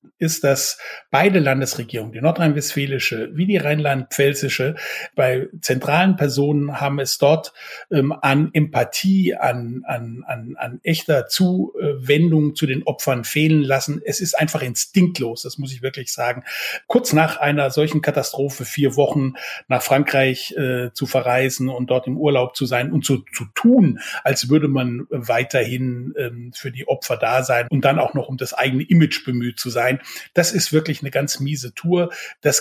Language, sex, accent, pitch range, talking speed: German, male, German, 130-160 Hz, 160 wpm